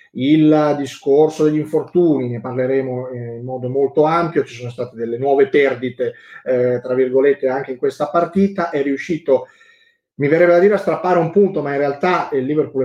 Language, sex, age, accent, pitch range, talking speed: Italian, male, 30-49, native, 125-155 Hz, 180 wpm